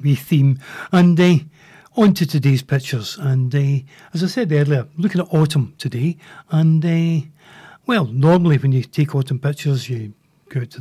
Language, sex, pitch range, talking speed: English, male, 135-165 Hz, 160 wpm